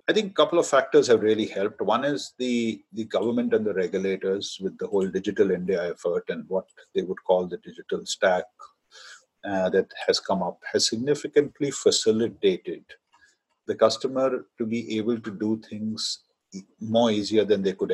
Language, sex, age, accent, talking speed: English, male, 50-69, Indian, 175 wpm